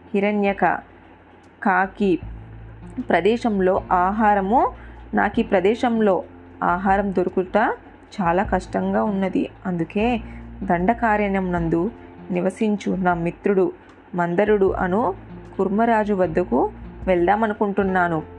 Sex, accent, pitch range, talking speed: female, native, 180-215 Hz, 75 wpm